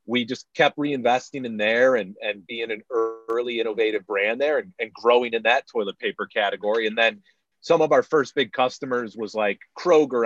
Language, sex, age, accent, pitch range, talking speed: English, male, 30-49, American, 110-135 Hz, 195 wpm